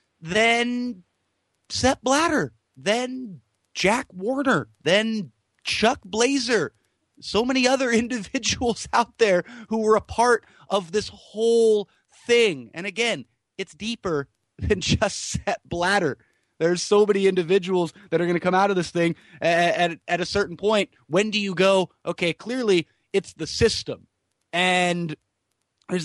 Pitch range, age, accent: 150-200 Hz, 30-49, American